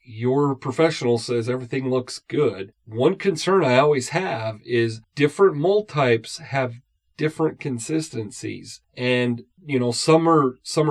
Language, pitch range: English, 125-165 Hz